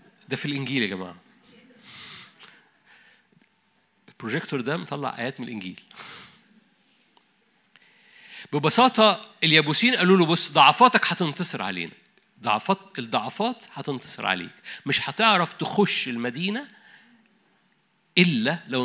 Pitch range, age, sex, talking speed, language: 135-215 Hz, 50-69, male, 90 wpm, Arabic